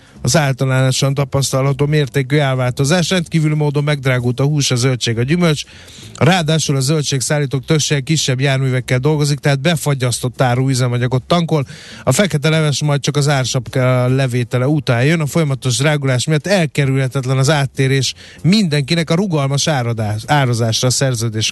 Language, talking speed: Hungarian, 135 wpm